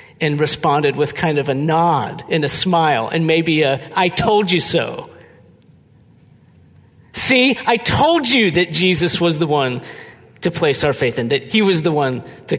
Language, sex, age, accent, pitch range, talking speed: English, male, 50-69, American, 120-165 Hz, 175 wpm